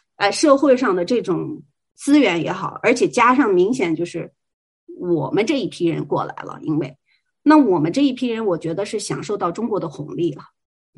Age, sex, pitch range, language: 30-49, female, 180-285 Hz, Chinese